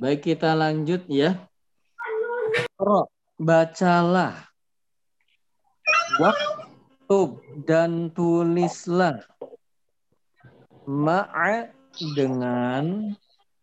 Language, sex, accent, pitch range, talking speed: Indonesian, male, native, 135-215 Hz, 45 wpm